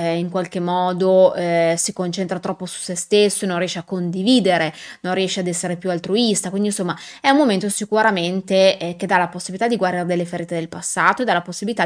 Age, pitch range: 20-39, 175-205 Hz